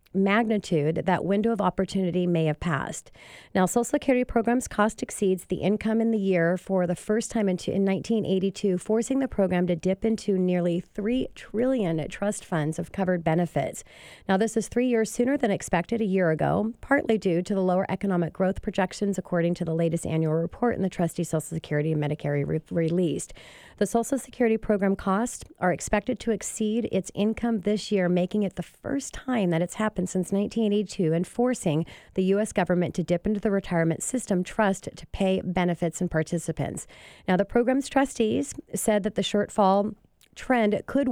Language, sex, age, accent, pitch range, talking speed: English, female, 40-59, American, 175-220 Hz, 180 wpm